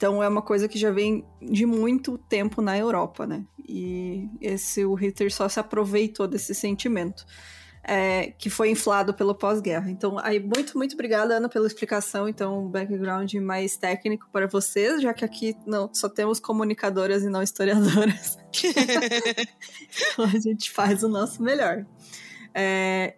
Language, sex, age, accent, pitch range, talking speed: Portuguese, female, 20-39, Brazilian, 195-235 Hz, 155 wpm